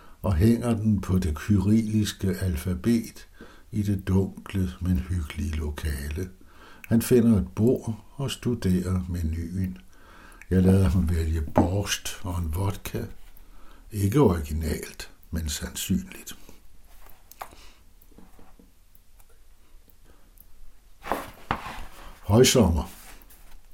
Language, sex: Danish, male